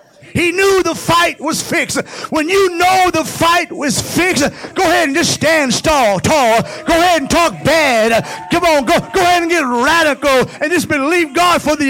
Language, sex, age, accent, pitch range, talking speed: English, male, 50-69, American, 230-310 Hz, 195 wpm